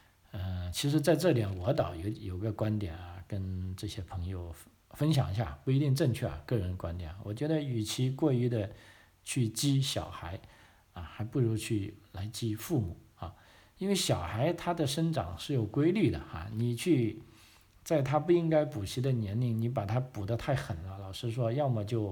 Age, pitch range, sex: 50-69, 100-120 Hz, male